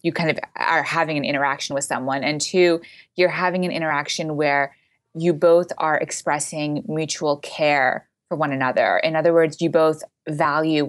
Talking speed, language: 170 wpm, English